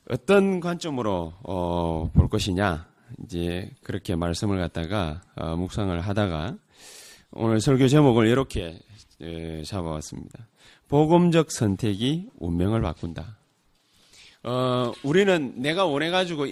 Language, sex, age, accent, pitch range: Korean, male, 30-49, native, 95-135 Hz